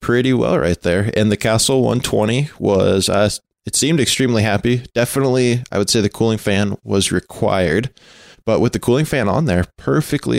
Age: 20-39